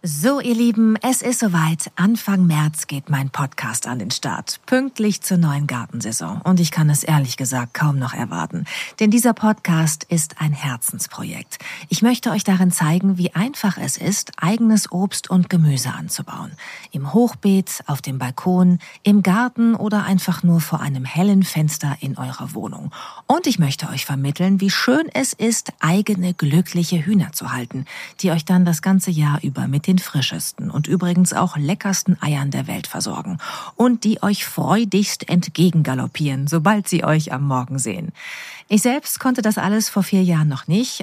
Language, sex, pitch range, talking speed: German, female, 155-205 Hz, 170 wpm